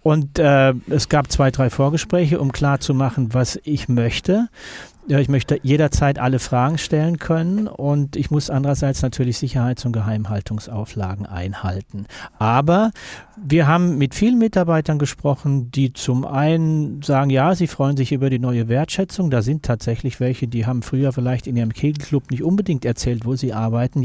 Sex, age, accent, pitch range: male, 40-59, German, 125-155 Hz